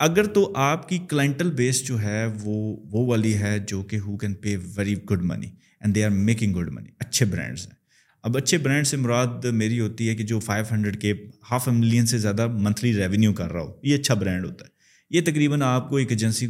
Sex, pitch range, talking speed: male, 105-130 Hz, 225 wpm